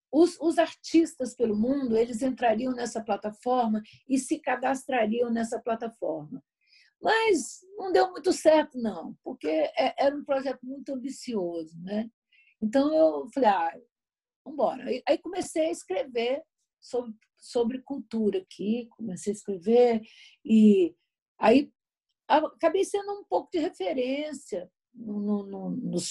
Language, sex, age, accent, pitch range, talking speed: Portuguese, female, 50-69, Brazilian, 215-265 Hz, 120 wpm